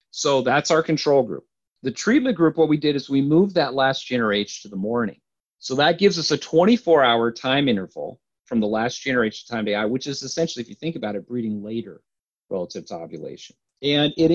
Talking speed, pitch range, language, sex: 210 wpm, 110-145 Hz, English, male